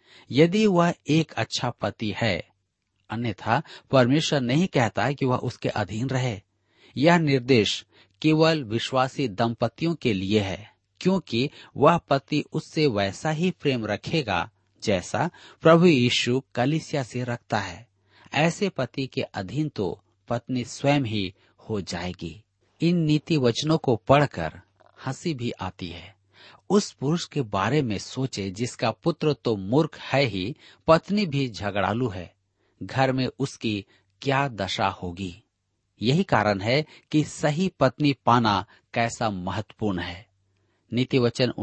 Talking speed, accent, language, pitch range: 130 wpm, native, Hindi, 100-140 Hz